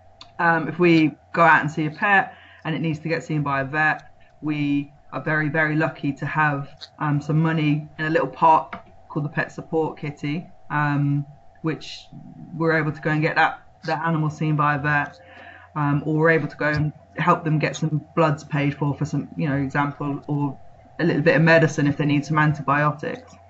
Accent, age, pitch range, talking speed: British, 20-39, 150-170 Hz, 210 wpm